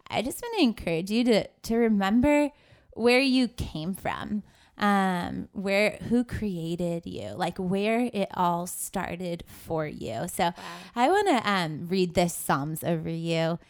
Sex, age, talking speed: female, 20-39, 155 wpm